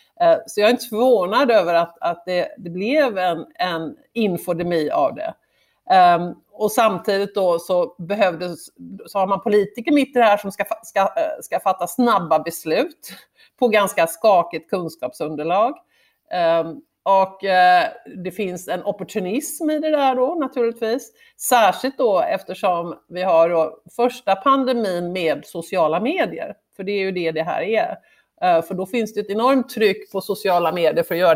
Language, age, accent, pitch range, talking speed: Swedish, 50-69, native, 175-245 Hz, 145 wpm